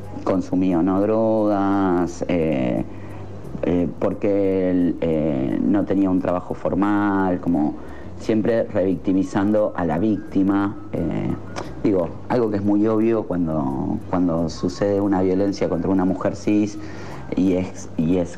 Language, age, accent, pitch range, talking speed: Spanish, 40-59, Argentinian, 90-105 Hz, 125 wpm